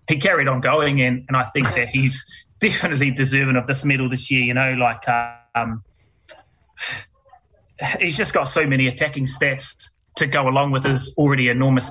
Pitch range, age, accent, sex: 125-140 Hz, 20-39, Australian, male